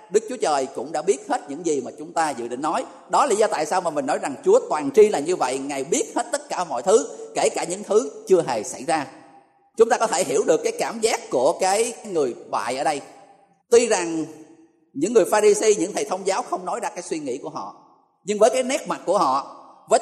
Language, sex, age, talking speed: Vietnamese, male, 20-39, 260 wpm